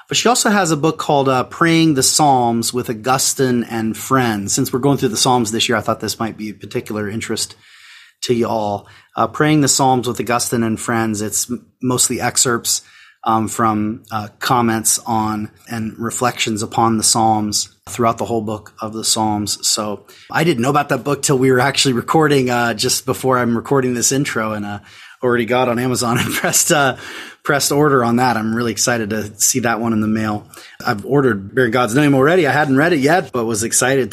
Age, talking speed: 30-49, 210 wpm